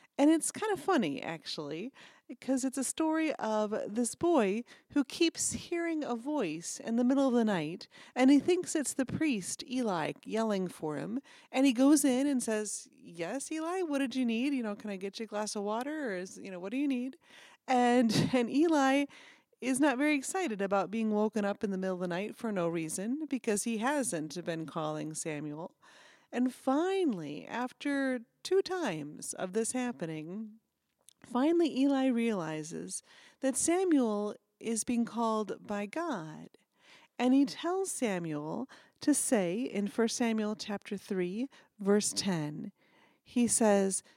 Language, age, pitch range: English, 30-49, 200-275 Hz